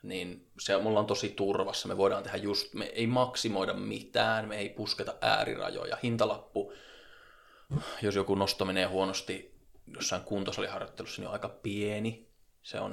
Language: Finnish